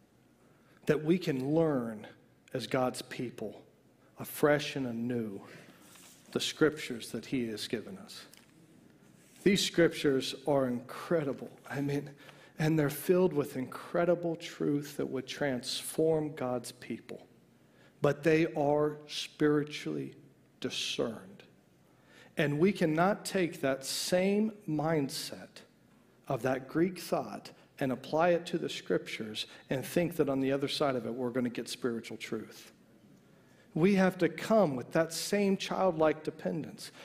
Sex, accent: male, American